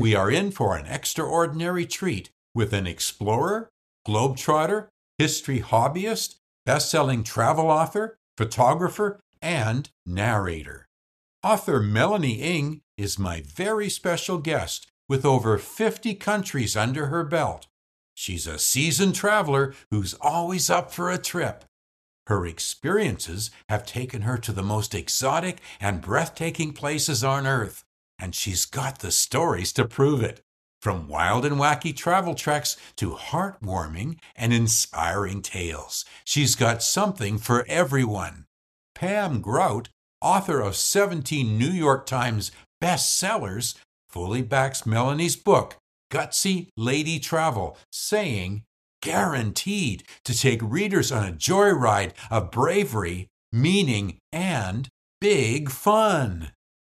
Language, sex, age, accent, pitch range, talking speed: English, male, 60-79, American, 105-165 Hz, 120 wpm